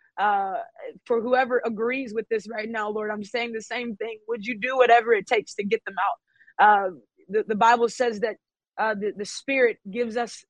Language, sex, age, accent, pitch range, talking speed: English, female, 20-39, American, 195-235 Hz, 205 wpm